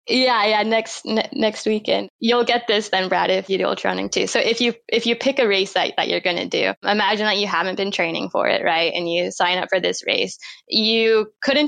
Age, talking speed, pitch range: 10-29, 255 wpm, 185-220 Hz